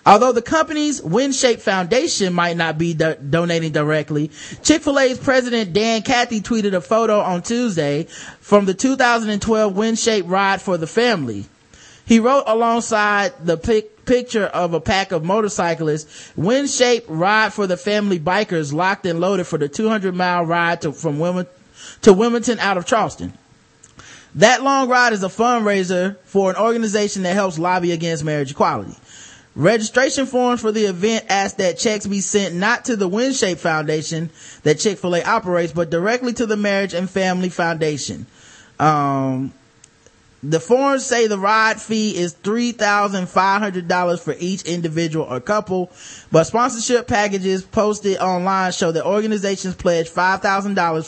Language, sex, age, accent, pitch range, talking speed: English, male, 30-49, American, 170-220 Hz, 150 wpm